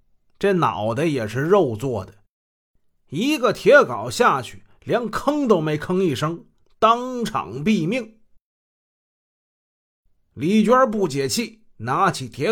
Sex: male